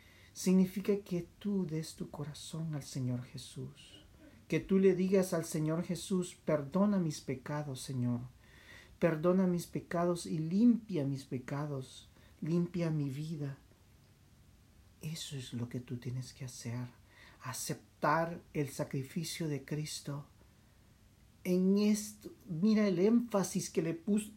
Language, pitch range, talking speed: Spanish, 115-180 Hz, 125 wpm